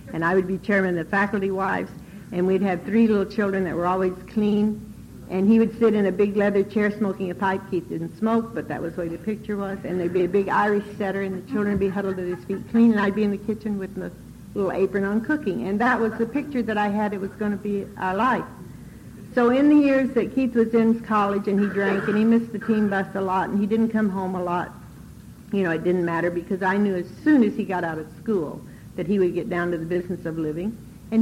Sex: female